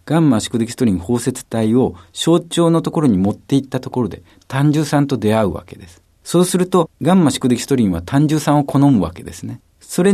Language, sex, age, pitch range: Japanese, male, 50-69, 100-145 Hz